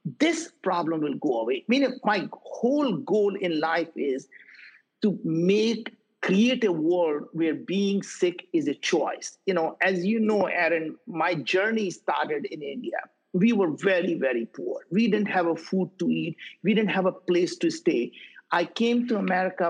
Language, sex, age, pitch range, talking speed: English, male, 50-69, 170-220 Hz, 175 wpm